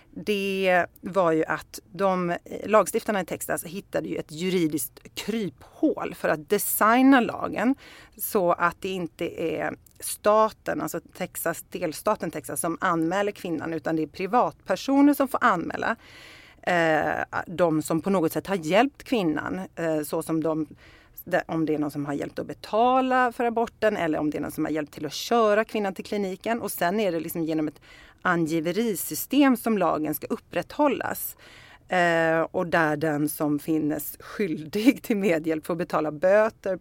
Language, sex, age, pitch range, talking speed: Swedish, female, 40-59, 155-215 Hz, 155 wpm